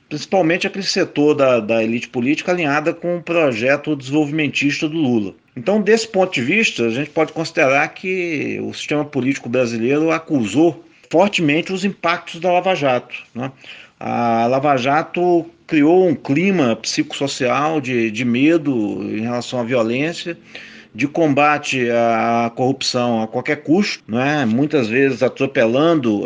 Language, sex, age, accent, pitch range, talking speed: Portuguese, male, 40-59, Brazilian, 125-170 Hz, 140 wpm